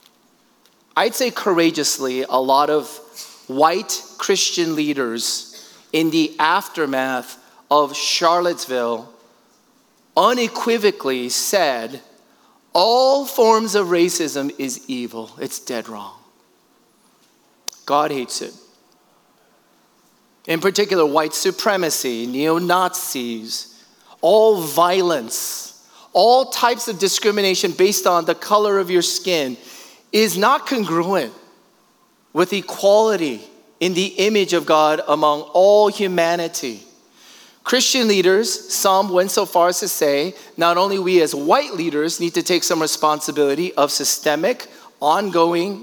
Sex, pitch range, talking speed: male, 155-210 Hz, 105 wpm